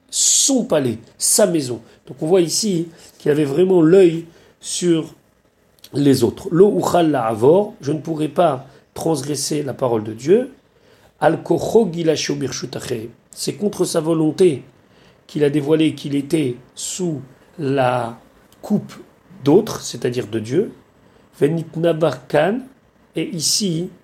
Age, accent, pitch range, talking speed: 40-59, French, 145-175 Hz, 105 wpm